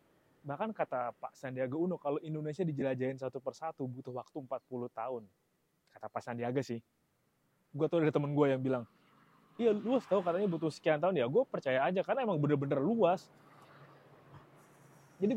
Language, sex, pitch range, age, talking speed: Indonesian, male, 135-175 Hz, 20-39, 160 wpm